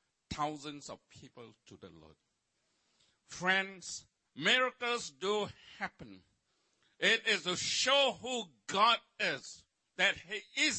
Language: English